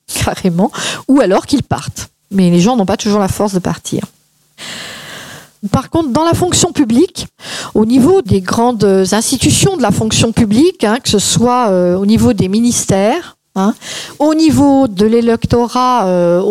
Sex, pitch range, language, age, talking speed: female, 195-285 Hz, French, 50-69, 165 wpm